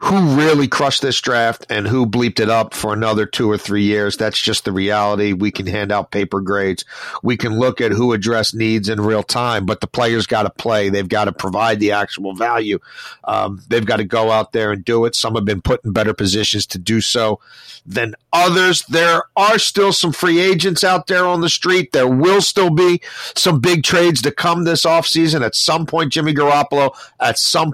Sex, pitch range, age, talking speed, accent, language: male, 115-155 Hz, 40-59, 220 wpm, American, English